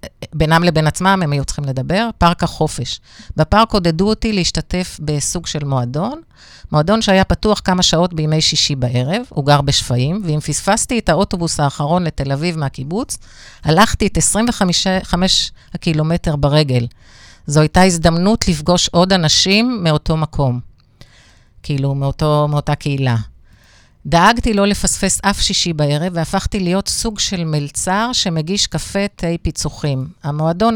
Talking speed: 135 wpm